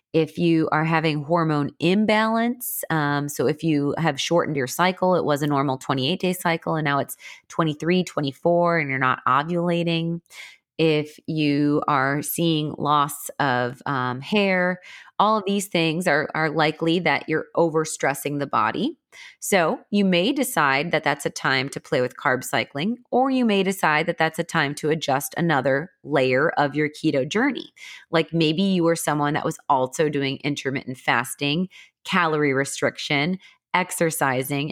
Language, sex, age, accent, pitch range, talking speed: English, female, 30-49, American, 145-180 Hz, 160 wpm